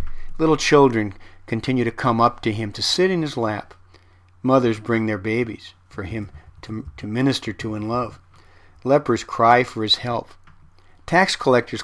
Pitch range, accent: 95-130 Hz, American